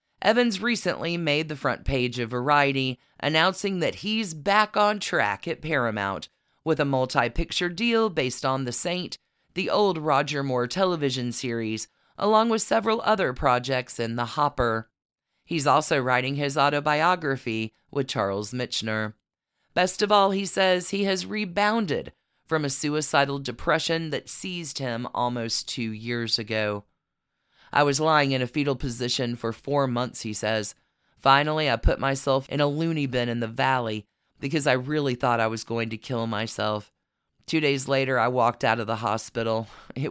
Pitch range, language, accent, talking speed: 115-160 Hz, English, American, 160 wpm